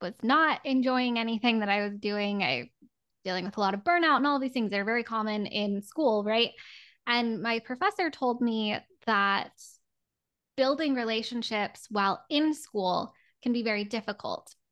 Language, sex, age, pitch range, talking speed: English, female, 10-29, 205-235 Hz, 165 wpm